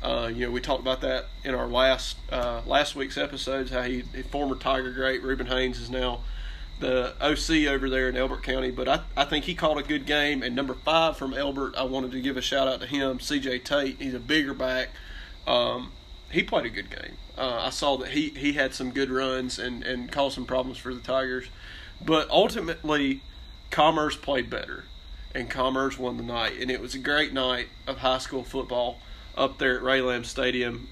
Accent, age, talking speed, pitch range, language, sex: American, 30-49, 210 wpm, 125-140 Hz, English, male